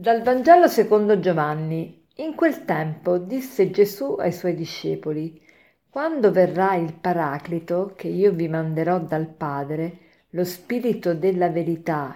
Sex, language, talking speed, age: female, Italian, 130 wpm, 50-69